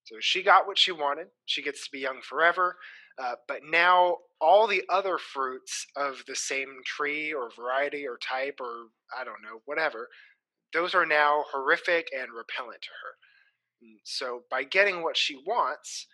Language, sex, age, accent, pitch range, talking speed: English, male, 20-39, American, 140-185 Hz, 170 wpm